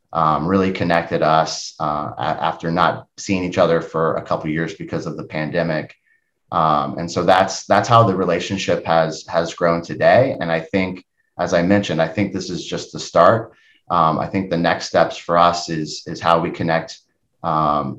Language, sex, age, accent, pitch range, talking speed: English, male, 30-49, American, 80-100 Hz, 195 wpm